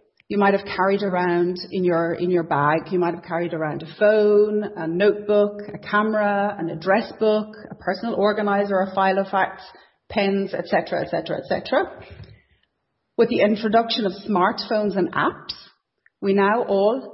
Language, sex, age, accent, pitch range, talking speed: English, female, 40-59, Irish, 185-210 Hz, 160 wpm